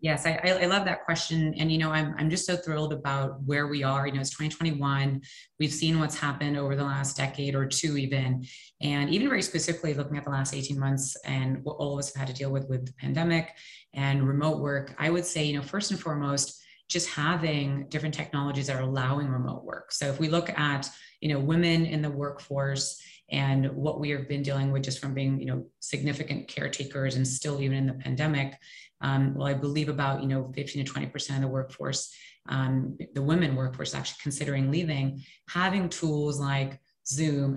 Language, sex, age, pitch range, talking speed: English, female, 30-49, 135-155 Hz, 200 wpm